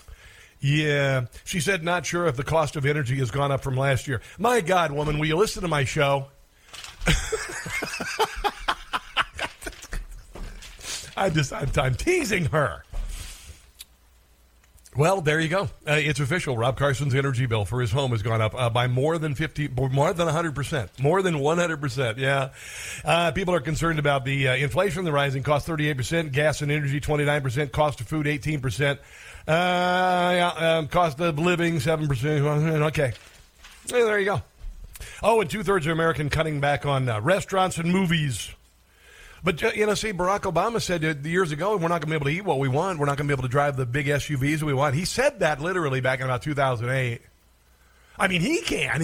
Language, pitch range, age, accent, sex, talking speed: English, 130-165 Hz, 50-69, American, male, 180 wpm